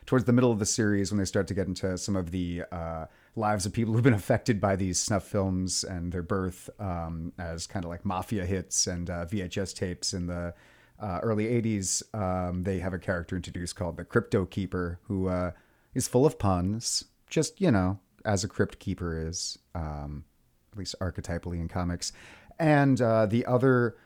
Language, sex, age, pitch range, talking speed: English, male, 30-49, 90-110 Hz, 195 wpm